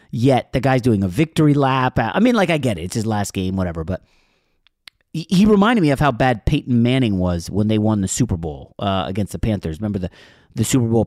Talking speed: 235 wpm